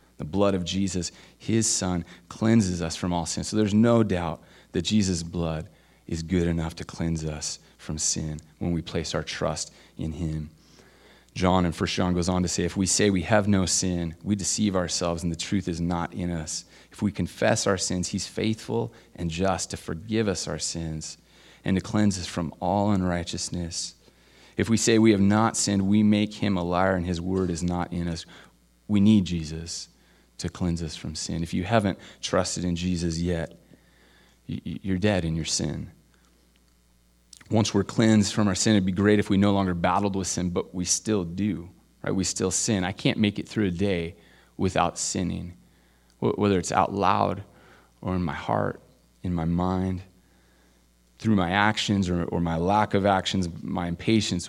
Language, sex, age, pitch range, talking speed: English, male, 30-49, 85-100 Hz, 190 wpm